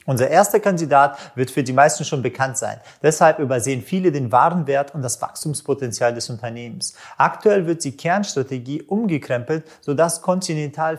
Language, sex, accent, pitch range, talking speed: German, male, German, 135-165 Hz, 145 wpm